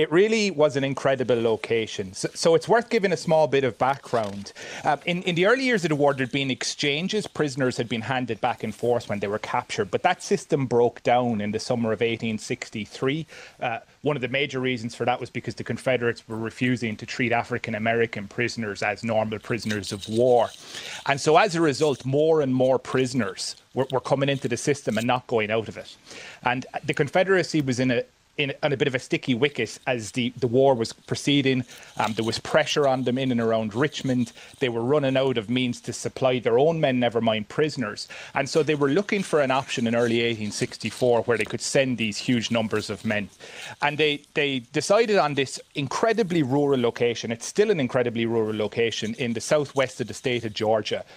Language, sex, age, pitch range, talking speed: English, male, 30-49, 115-145 Hz, 215 wpm